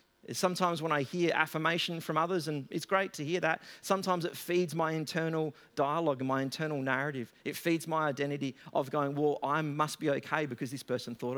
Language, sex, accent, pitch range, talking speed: English, male, Australian, 120-170 Hz, 200 wpm